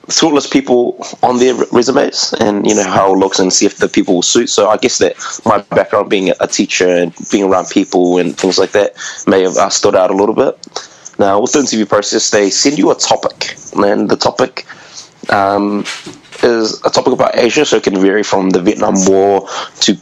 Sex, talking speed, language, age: male, 210 wpm, English, 20-39